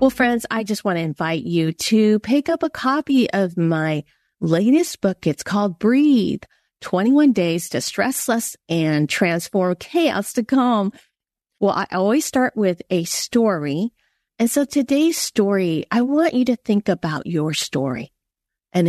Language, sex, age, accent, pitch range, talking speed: English, female, 40-59, American, 175-255 Hz, 155 wpm